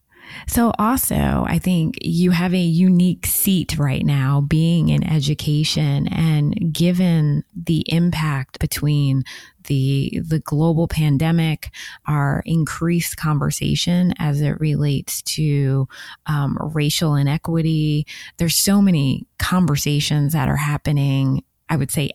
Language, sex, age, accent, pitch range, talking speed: English, female, 20-39, American, 145-170 Hz, 115 wpm